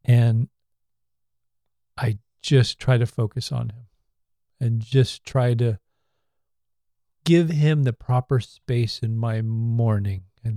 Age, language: 40-59, English